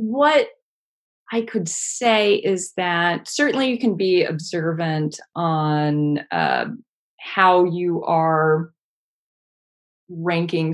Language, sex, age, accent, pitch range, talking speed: English, female, 20-39, American, 155-190 Hz, 95 wpm